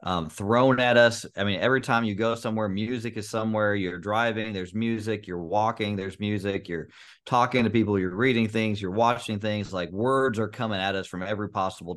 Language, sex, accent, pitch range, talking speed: English, male, American, 95-110 Hz, 205 wpm